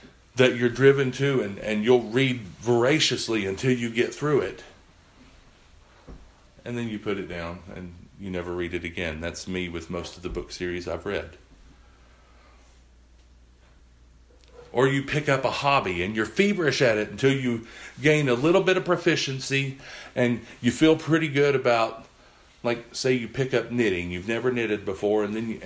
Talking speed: 175 wpm